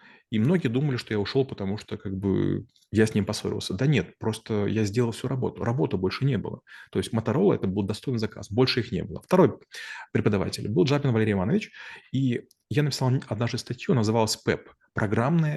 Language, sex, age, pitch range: Russian, male, 30-49, 100-125 Hz